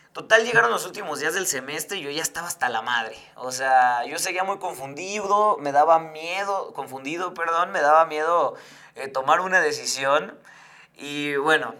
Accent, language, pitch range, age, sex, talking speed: Mexican, Spanish, 135-185 Hz, 30-49, male, 175 wpm